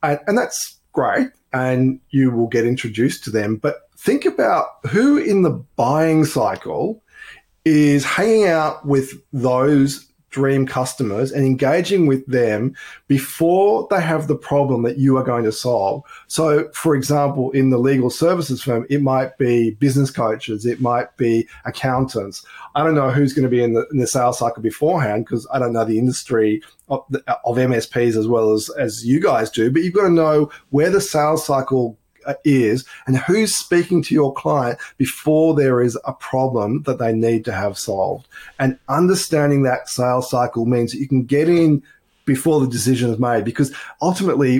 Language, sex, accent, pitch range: English, male, Australian, 120-150 Hz